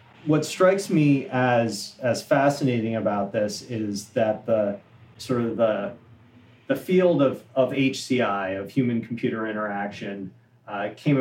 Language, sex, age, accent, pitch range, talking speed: English, male, 30-49, American, 110-130 Hz, 130 wpm